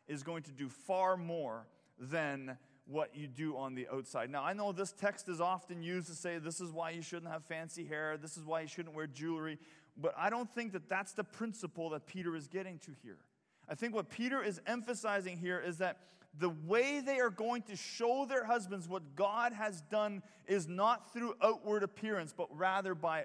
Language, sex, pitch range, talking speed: English, male, 165-220 Hz, 210 wpm